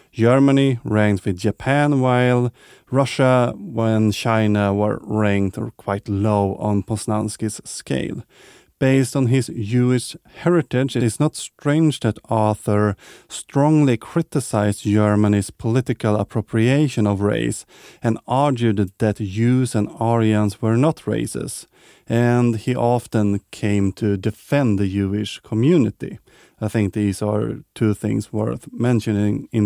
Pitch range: 105-125 Hz